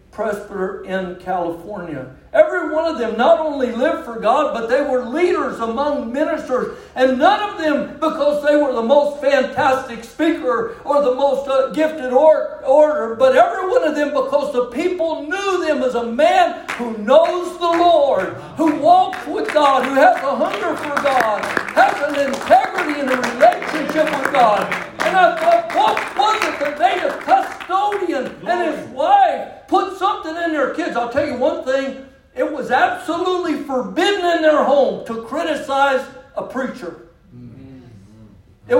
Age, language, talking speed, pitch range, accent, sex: 60-79, English, 160 wpm, 235-320 Hz, American, male